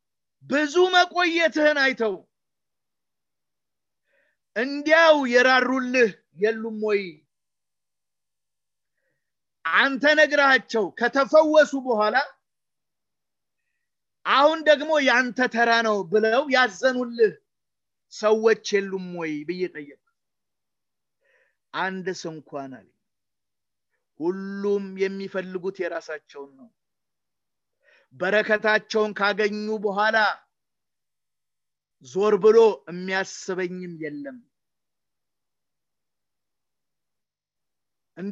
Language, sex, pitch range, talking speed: English, male, 185-255 Hz, 50 wpm